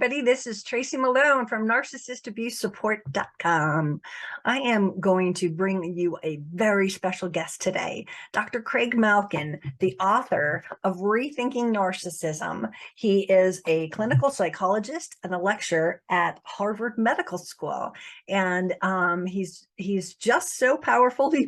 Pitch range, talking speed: 185-235 Hz, 130 wpm